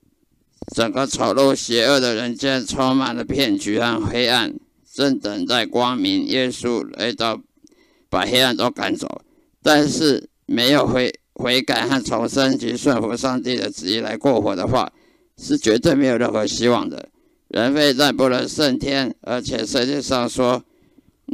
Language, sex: Chinese, male